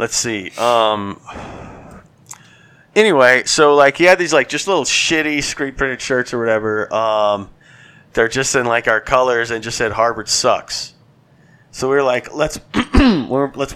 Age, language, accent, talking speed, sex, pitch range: 30-49, English, American, 155 wpm, male, 110-140 Hz